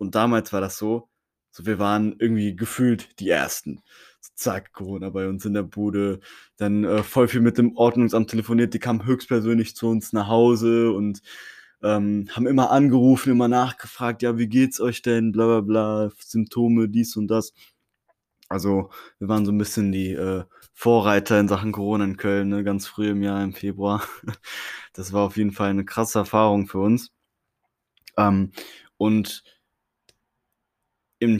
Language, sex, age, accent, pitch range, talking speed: German, male, 20-39, German, 100-120 Hz, 160 wpm